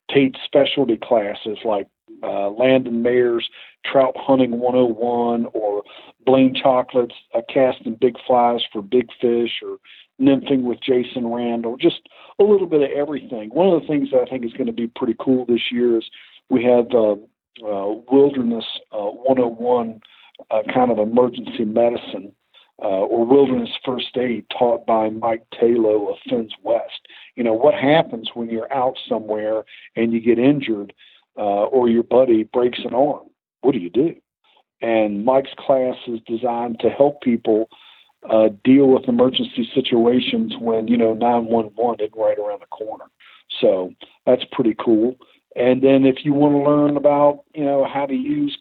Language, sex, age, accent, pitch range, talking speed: English, male, 50-69, American, 115-140 Hz, 165 wpm